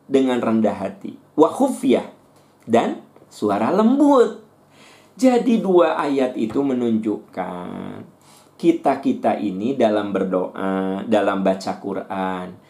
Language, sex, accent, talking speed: Indonesian, male, native, 90 wpm